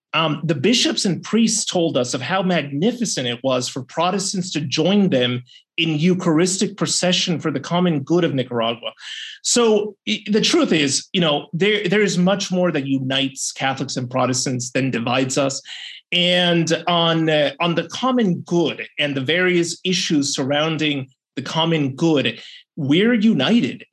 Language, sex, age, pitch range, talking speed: English, male, 30-49, 135-180 Hz, 160 wpm